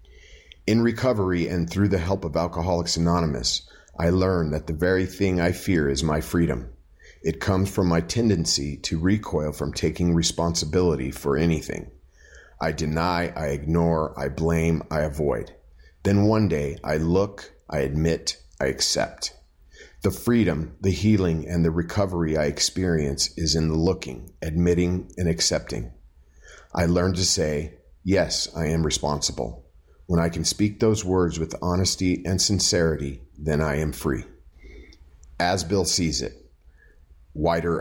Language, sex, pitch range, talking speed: English, male, 75-95 Hz, 145 wpm